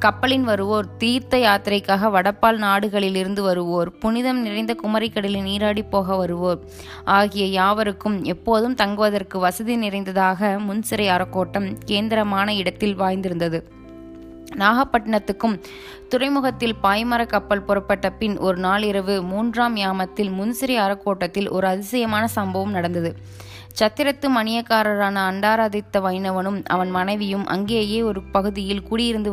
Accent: native